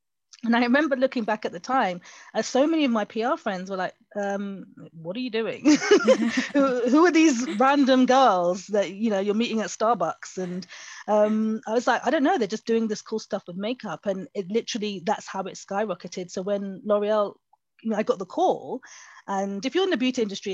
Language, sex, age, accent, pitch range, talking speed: English, female, 30-49, British, 180-225 Hz, 215 wpm